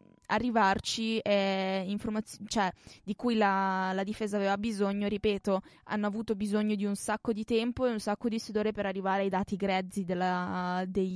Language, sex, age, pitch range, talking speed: Italian, female, 20-39, 195-265 Hz, 160 wpm